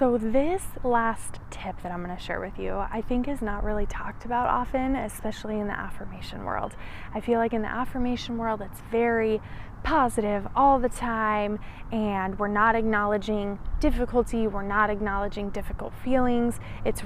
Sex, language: female, English